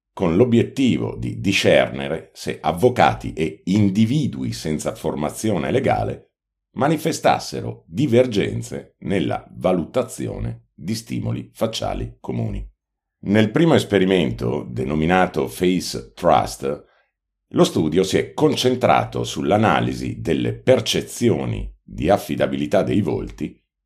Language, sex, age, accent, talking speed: Italian, male, 50-69, native, 95 wpm